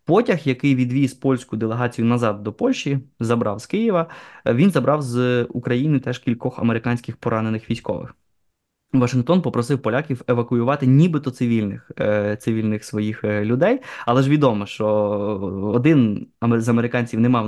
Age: 20-39